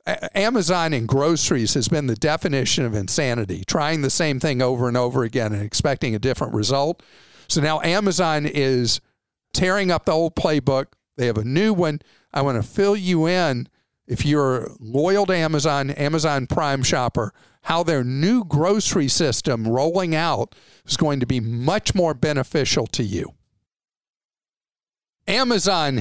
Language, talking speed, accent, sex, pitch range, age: English, 155 wpm, American, male, 125-165 Hz, 50-69